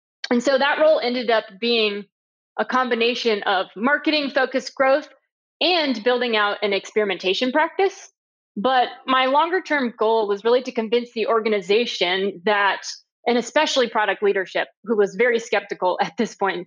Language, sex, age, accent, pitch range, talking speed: English, female, 20-39, American, 205-260 Hz, 150 wpm